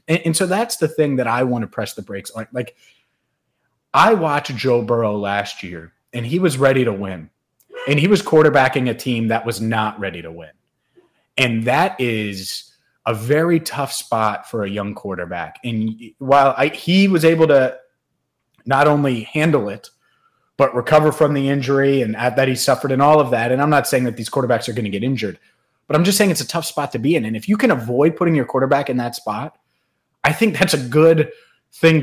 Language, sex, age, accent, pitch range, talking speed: English, male, 30-49, American, 125-155 Hz, 210 wpm